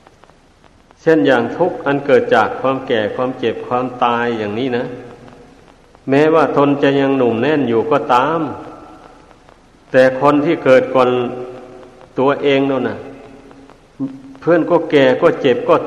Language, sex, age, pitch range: Thai, male, 60-79, 125-145 Hz